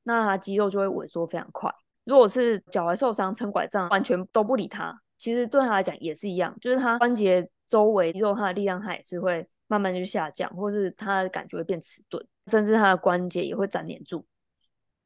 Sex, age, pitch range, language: female, 20-39, 180-215 Hz, Chinese